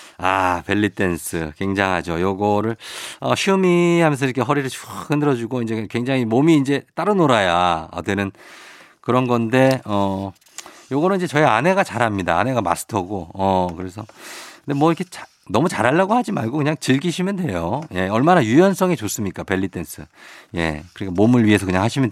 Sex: male